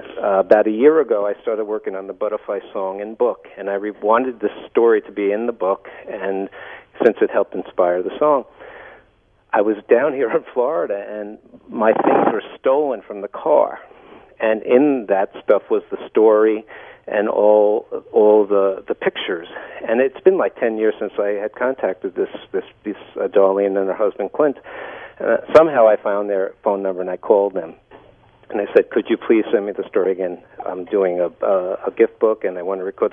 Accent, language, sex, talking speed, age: American, English, male, 200 wpm, 50-69